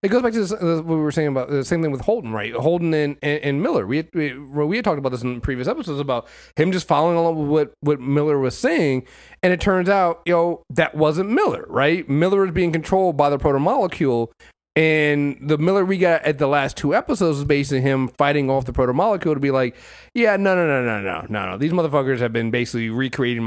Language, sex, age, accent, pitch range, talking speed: English, male, 30-49, American, 125-170 Hz, 240 wpm